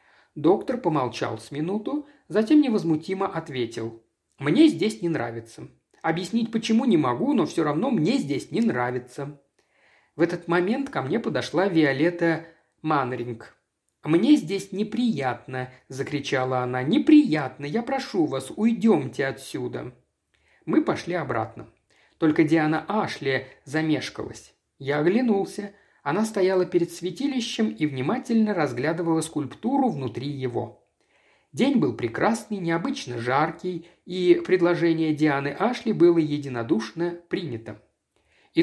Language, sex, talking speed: Russian, male, 115 wpm